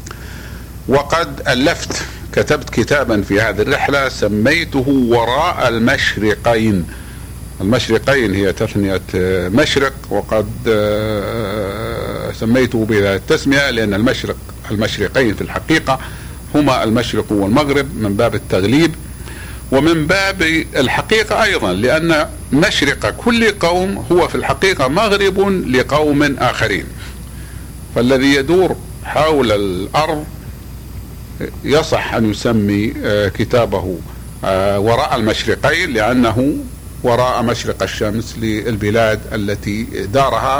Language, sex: Arabic, male